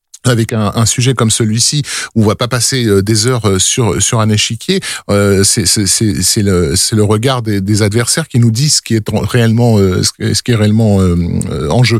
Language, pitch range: French, 110-130 Hz